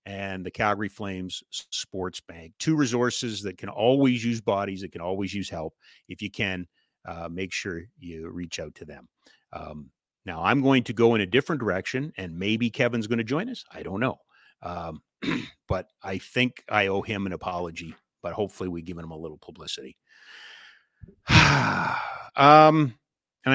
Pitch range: 95-125 Hz